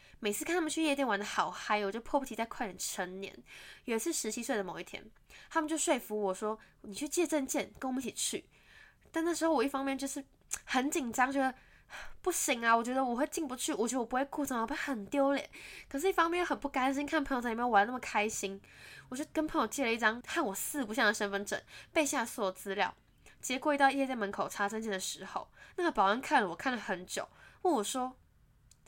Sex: female